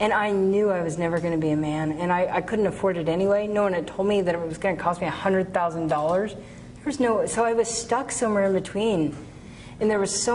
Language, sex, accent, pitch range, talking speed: English, female, American, 170-200 Hz, 250 wpm